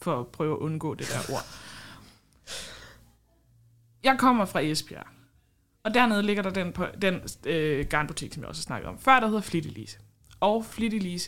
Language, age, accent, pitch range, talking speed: Danish, 20-39, native, 120-180 Hz, 170 wpm